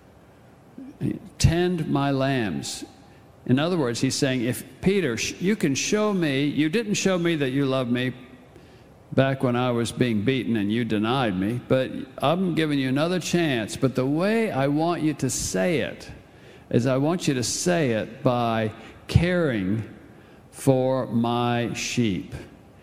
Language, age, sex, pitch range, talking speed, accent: English, 60-79, male, 120-160 Hz, 155 wpm, American